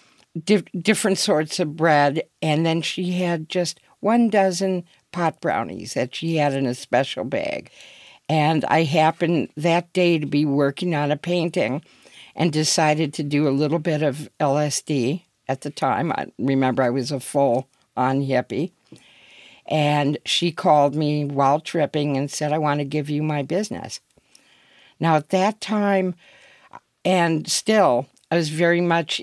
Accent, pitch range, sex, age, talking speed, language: American, 145-175 Hz, female, 50-69, 155 wpm, English